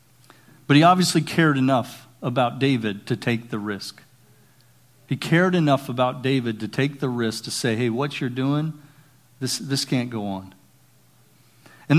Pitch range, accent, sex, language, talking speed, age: 125-160 Hz, American, male, English, 160 wpm, 50-69